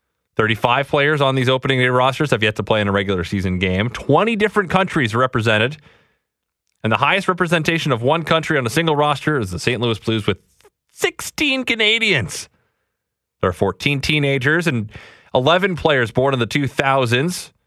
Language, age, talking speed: English, 30-49, 170 wpm